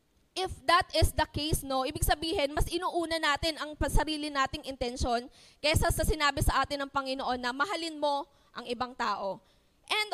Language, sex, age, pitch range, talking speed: Filipino, female, 20-39, 265-320 Hz, 170 wpm